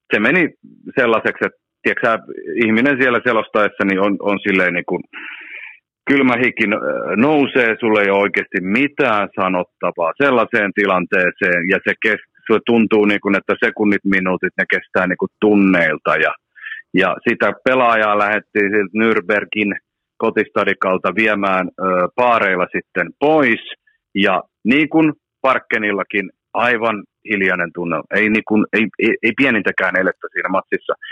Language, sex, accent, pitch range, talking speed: Finnish, male, native, 95-120 Hz, 120 wpm